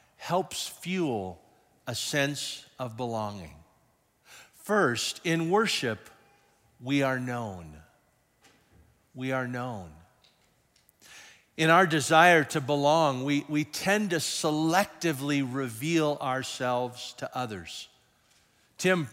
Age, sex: 50-69, male